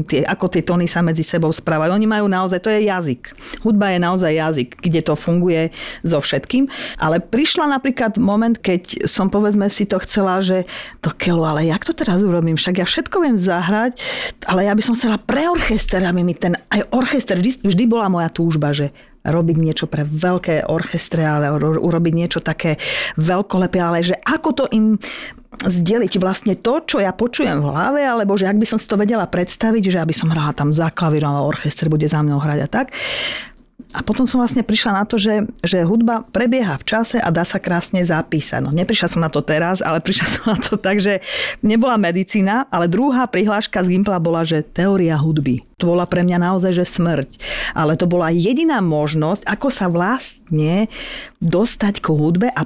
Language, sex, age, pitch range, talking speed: Slovak, female, 40-59, 165-225 Hz, 190 wpm